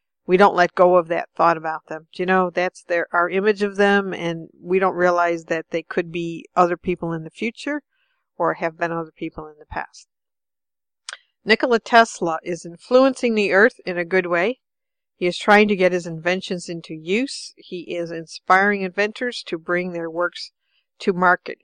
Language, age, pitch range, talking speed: English, 50-69, 170-205 Hz, 185 wpm